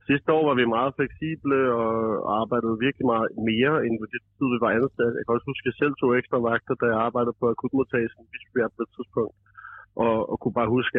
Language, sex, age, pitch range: Danish, male, 30-49, 110-130 Hz